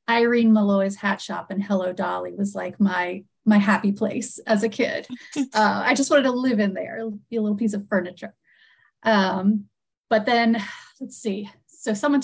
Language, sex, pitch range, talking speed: English, female, 200-235 Hz, 180 wpm